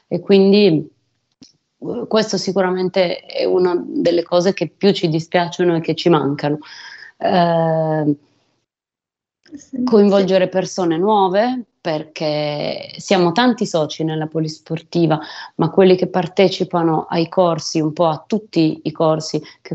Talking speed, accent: 120 wpm, native